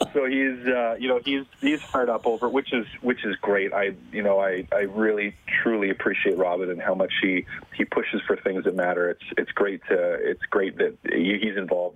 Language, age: English, 30-49